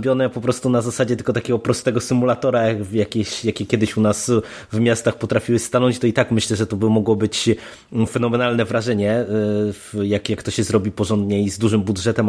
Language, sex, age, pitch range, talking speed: Polish, male, 20-39, 110-130 Hz, 195 wpm